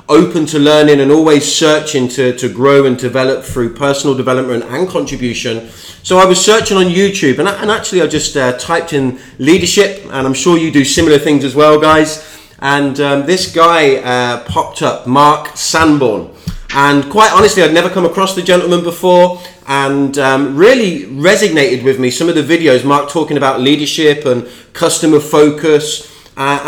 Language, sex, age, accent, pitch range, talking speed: English, male, 30-49, British, 140-170 Hz, 175 wpm